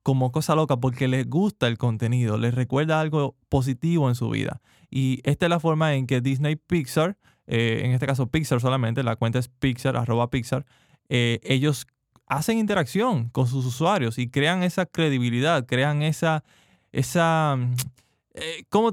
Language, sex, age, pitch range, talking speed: Spanish, male, 20-39, 125-160 Hz, 165 wpm